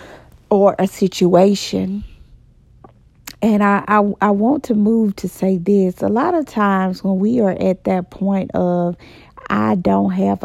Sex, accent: female, American